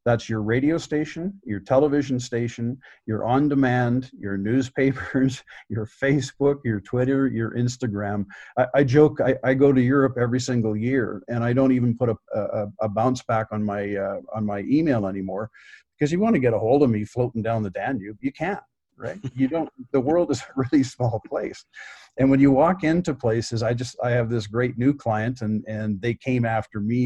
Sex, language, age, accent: male, English, 50-69, American